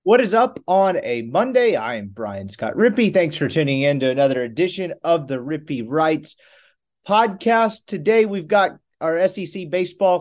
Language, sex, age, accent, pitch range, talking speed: English, male, 30-49, American, 140-190 Hz, 170 wpm